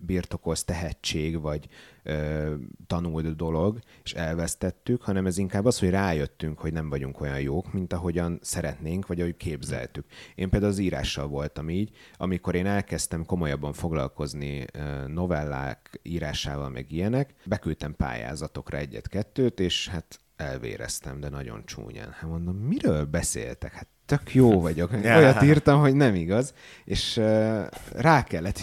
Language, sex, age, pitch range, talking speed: Hungarian, male, 30-49, 80-105 Hz, 140 wpm